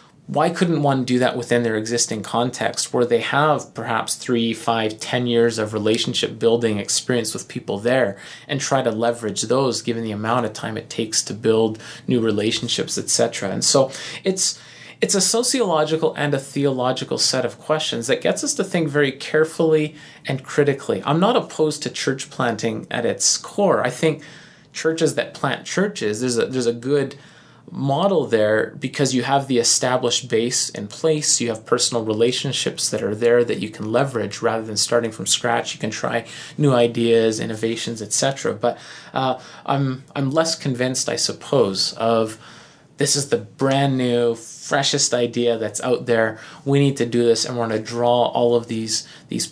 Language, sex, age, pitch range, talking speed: English, male, 30-49, 115-145 Hz, 180 wpm